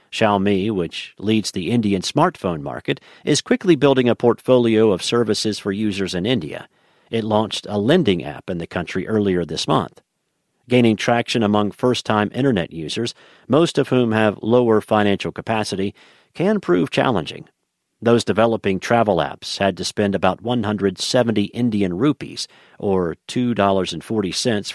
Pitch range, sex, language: 100-120 Hz, male, English